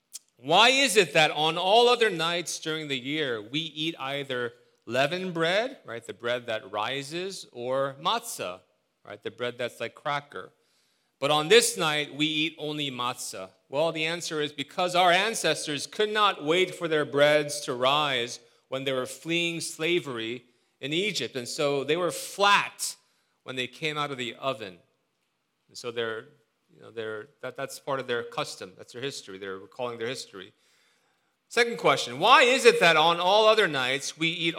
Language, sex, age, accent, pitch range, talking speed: English, male, 40-59, American, 130-175 Hz, 175 wpm